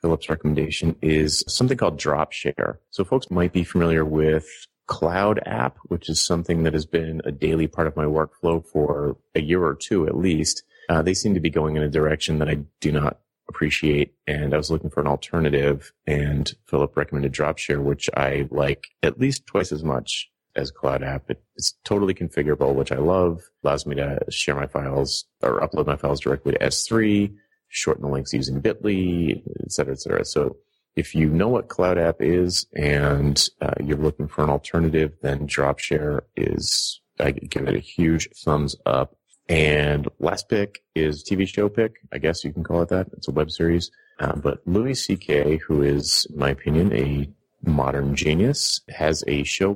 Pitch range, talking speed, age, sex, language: 70-85 Hz, 185 wpm, 30-49, male, English